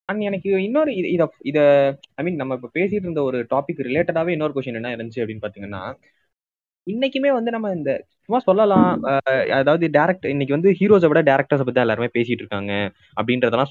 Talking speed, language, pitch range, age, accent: 150 wpm, Tamil, 125-190 Hz, 20-39, native